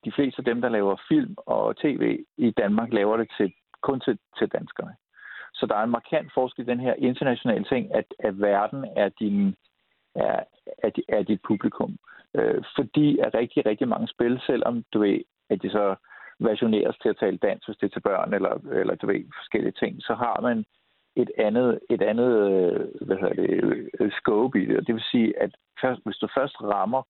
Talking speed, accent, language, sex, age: 195 wpm, native, Danish, male, 50-69